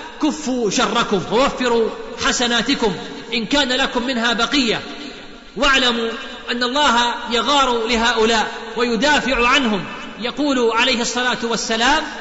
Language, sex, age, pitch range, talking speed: Arabic, male, 40-59, 225-255 Hz, 100 wpm